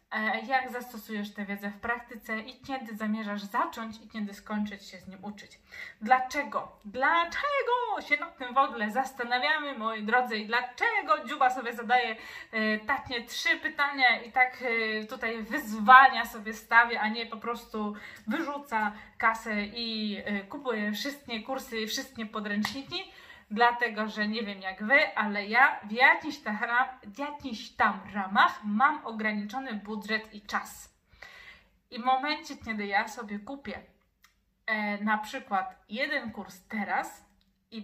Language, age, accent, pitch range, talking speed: Polish, 20-39, native, 215-275 Hz, 140 wpm